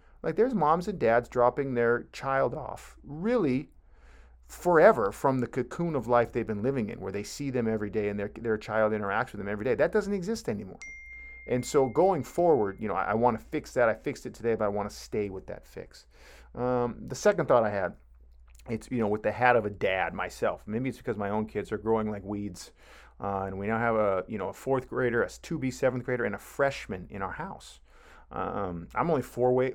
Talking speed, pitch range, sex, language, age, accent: 230 wpm, 100-130 Hz, male, English, 40-59, American